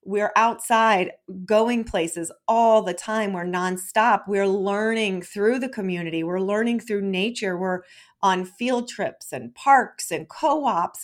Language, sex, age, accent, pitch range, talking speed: English, female, 40-59, American, 195-245 Hz, 140 wpm